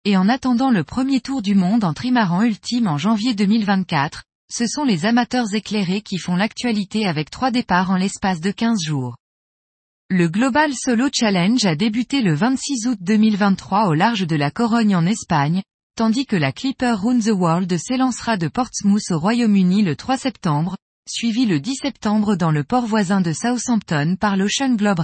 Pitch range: 185-245 Hz